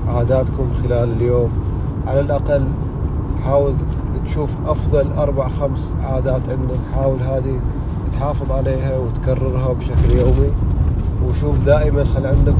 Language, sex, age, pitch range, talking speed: Arabic, male, 30-49, 90-125 Hz, 110 wpm